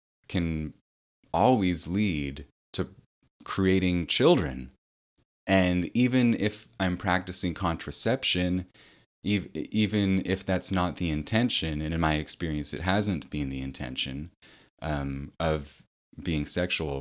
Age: 20-39